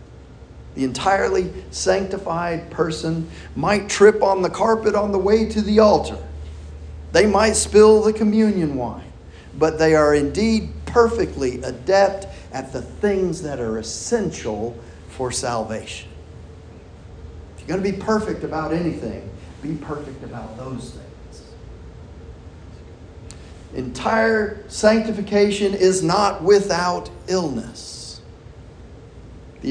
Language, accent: English, American